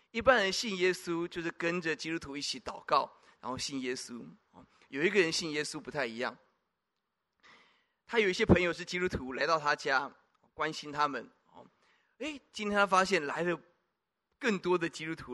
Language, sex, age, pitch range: Chinese, male, 20-39, 140-185 Hz